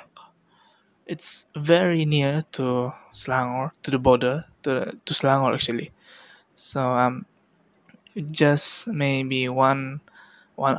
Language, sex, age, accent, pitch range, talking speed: English, male, 20-39, Japanese, 130-165 Hz, 105 wpm